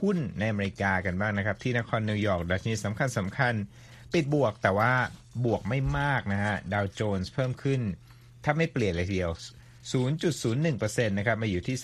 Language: Thai